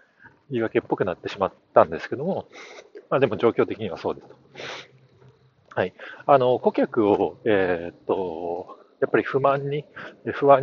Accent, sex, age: native, male, 40-59